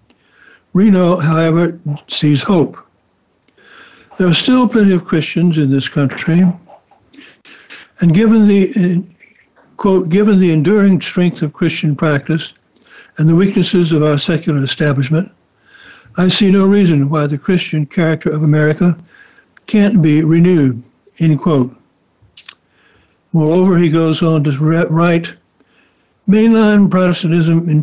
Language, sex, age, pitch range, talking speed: English, male, 60-79, 150-180 Hz, 115 wpm